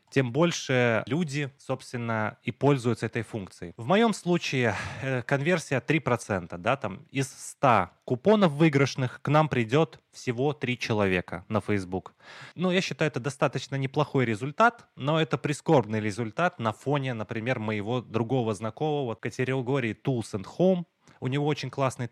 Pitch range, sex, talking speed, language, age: 120-150 Hz, male, 140 wpm, Russian, 20-39